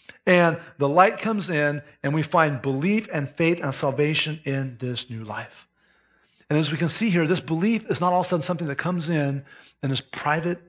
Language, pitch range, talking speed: English, 150-205 Hz, 215 wpm